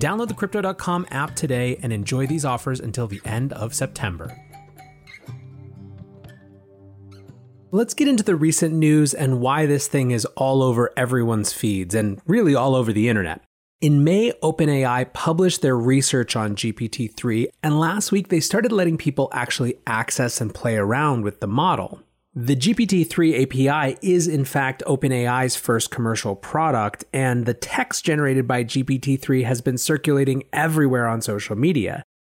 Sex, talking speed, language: male, 150 wpm, English